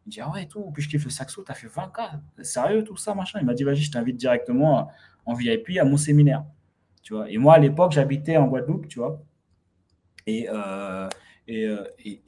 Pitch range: 110-155 Hz